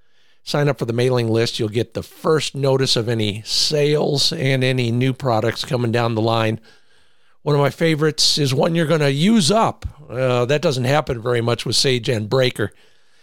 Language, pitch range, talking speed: English, 115-150 Hz, 195 wpm